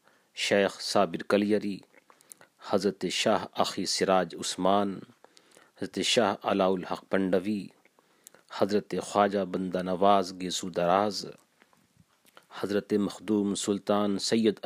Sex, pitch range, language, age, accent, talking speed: male, 90-100 Hz, English, 40-59, Indian, 95 wpm